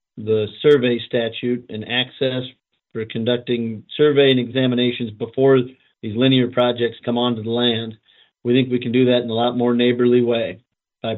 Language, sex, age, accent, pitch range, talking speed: English, male, 40-59, American, 115-130 Hz, 165 wpm